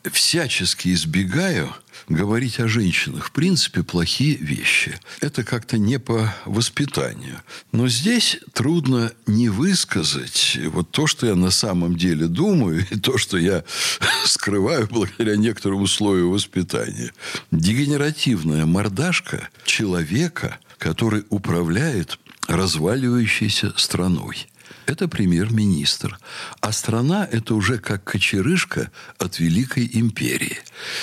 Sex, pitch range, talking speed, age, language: male, 95-150 Hz, 105 wpm, 60-79, Russian